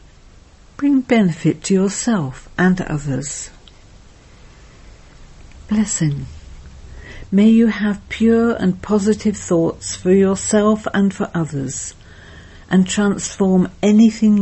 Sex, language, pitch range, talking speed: female, English, 155-205 Hz, 90 wpm